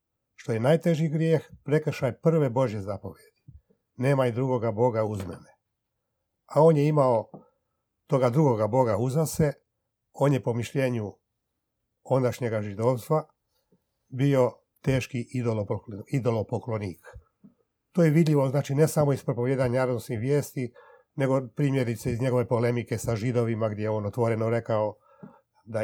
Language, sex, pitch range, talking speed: Croatian, male, 110-135 Hz, 125 wpm